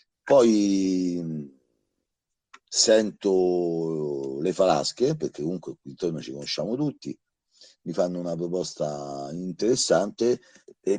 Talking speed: 95 wpm